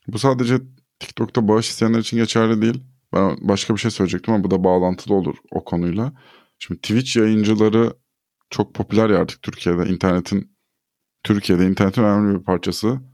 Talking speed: 155 wpm